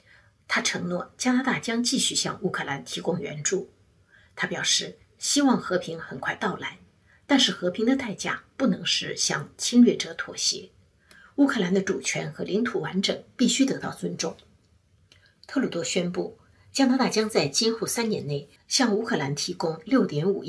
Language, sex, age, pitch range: Chinese, female, 50-69, 150-235 Hz